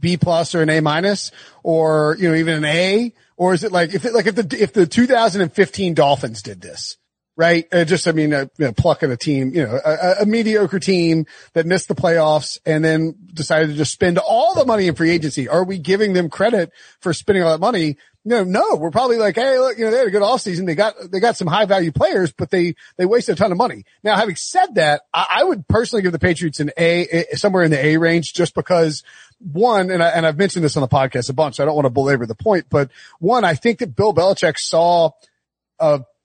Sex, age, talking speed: male, 40-59, 240 wpm